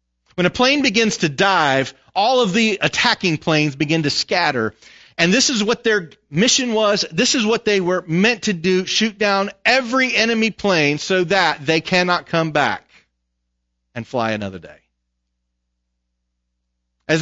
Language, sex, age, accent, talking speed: English, male, 40-59, American, 155 wpm